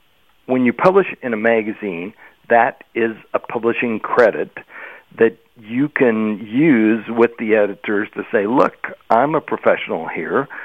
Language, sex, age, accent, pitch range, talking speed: English, male, 50-69, American, 105-125 Hz, 140 wpm